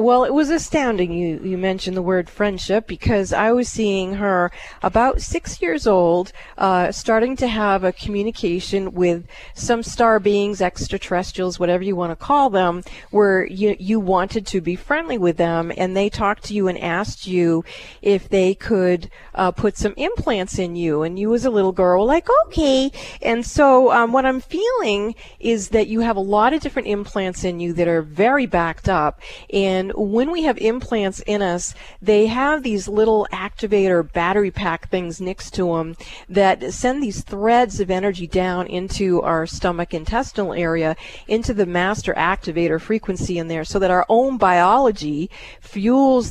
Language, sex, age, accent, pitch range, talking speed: English, female, 40-59, American, 180-230 Hz, 180 wpm